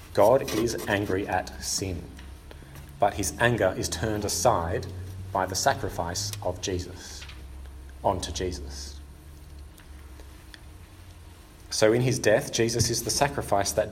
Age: 40-59